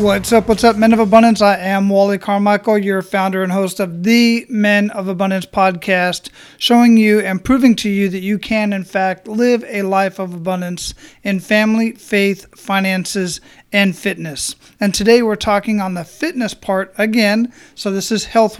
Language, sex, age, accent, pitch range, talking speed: English, male, 40-59, American, 190-225 Hz, 180 wpm